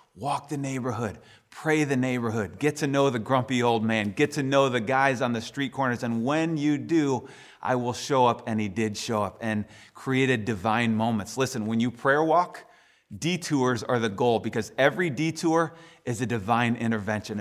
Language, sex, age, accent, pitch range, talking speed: English, male, 30-49, American, 110-140 Hz, 190 wpm